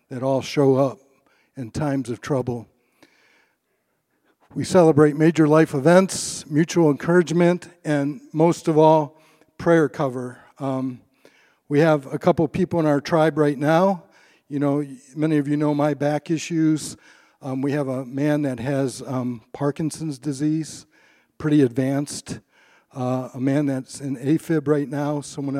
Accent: American